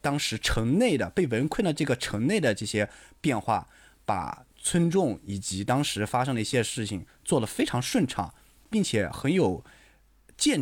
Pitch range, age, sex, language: 110-170 Hz, 20-39, male, Chinese